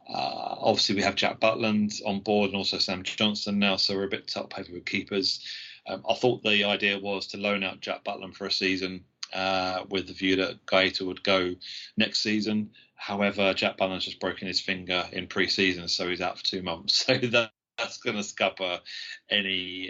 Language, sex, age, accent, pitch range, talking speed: English, male, 30-49, British, 95-105 Hz, 205 wpm